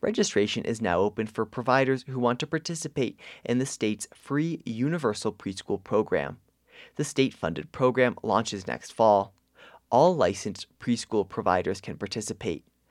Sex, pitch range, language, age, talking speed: male, 100-135 Hz, English, 30-49, 135 wpm